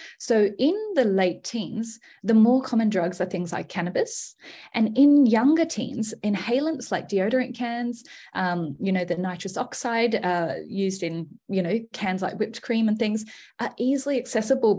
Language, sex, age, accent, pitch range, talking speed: English, female, 20-39, Australian, 185-255 Hz, 165 wpm